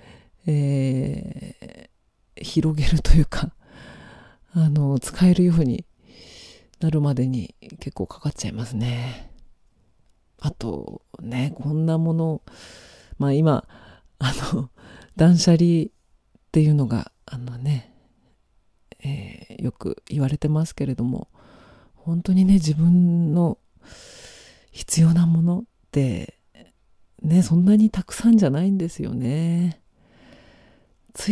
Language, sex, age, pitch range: Japanese, female, 40-59, 135-170 Hz